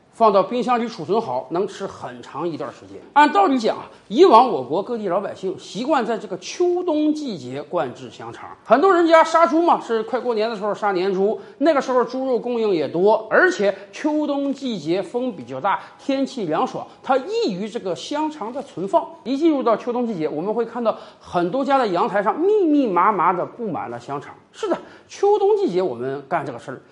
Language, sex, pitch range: Chinese, male, 195-320 Hz